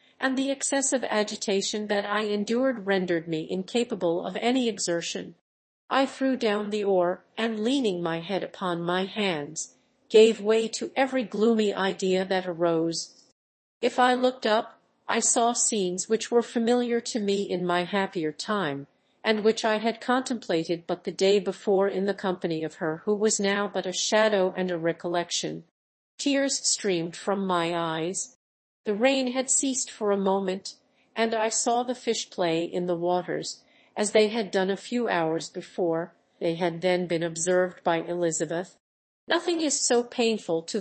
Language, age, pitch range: English, 50-69, 175-230 Hz